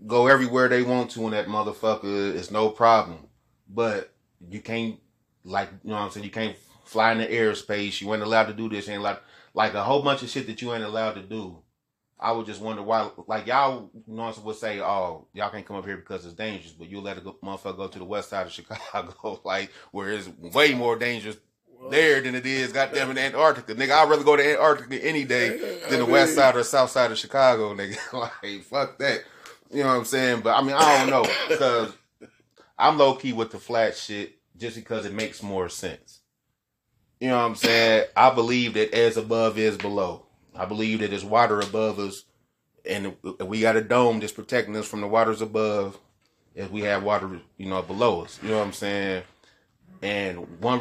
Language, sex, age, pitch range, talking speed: English, male, 30-49, 100-120 Hz, 220 wpm